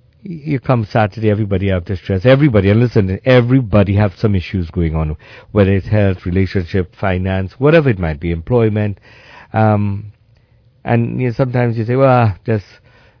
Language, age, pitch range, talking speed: English, 60-79, 90-120 Hz, 160 wpm